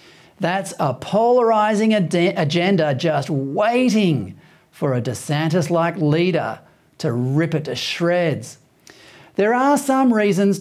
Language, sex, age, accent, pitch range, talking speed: English, male, 40-59, Australian, 145-200 Hz, 105 wpm